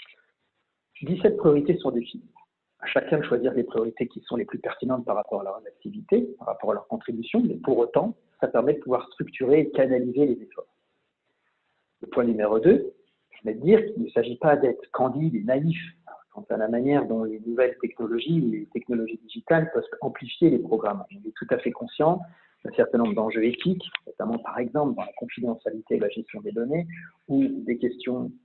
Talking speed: 195 wpm